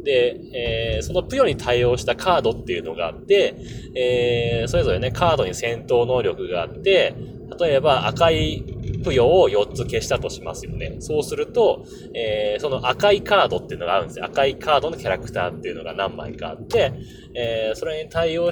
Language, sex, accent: Japanese, male, native